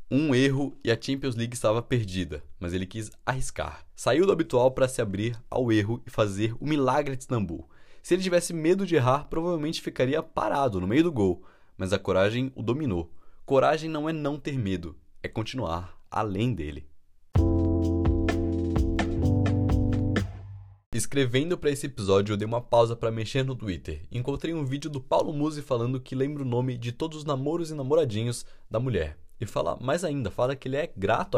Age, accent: 20-39, Brazilian